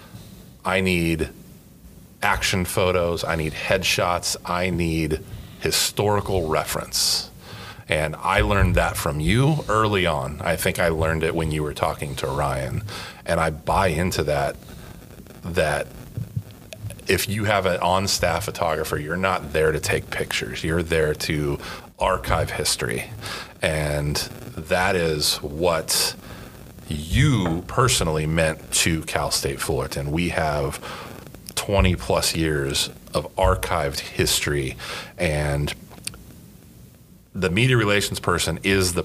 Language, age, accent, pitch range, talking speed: English, 30-49, American, 75-95 Hz, 120 wpm